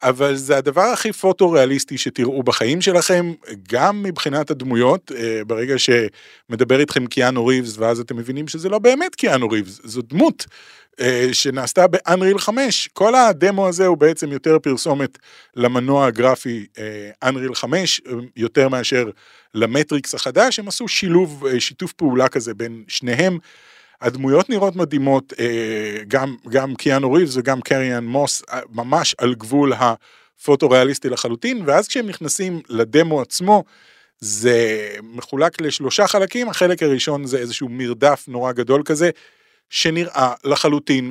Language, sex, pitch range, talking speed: Hebrew, male, 125-175 Hz, 125 wpm